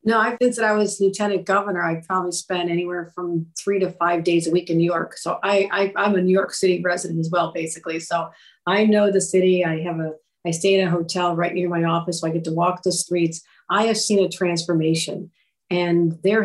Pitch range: 175-200 Hz